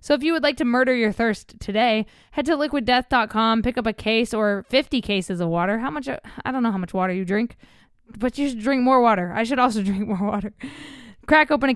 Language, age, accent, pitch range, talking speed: English, 20-39, American, 205-250 Hz, 240 wpm